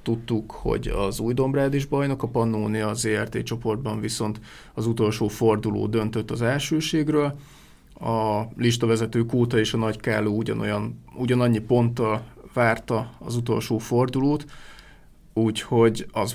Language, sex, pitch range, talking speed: Hungarian, male, 110-120 Hz, 130 wpm